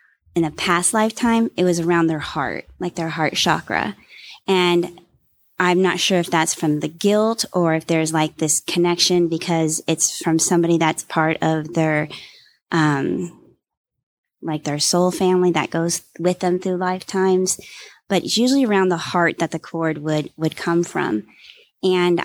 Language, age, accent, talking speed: English, 20-39, American, 165 wpm